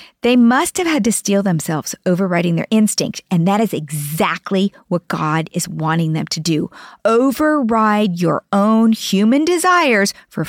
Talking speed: 155 wpm